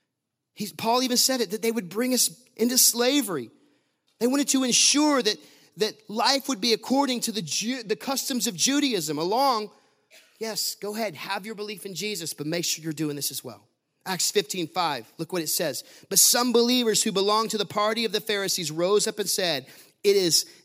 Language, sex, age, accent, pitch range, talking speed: English, male, 30-49, American, 170-230 Hz, 200 wpm